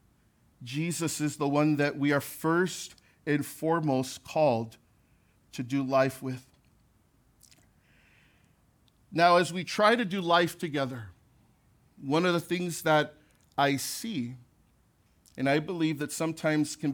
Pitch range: 130-165 Hz